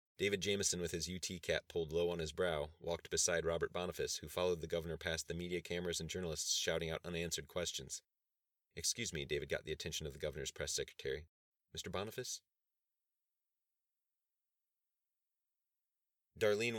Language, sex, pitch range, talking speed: English, male, 80-90 Hz, 155 wpm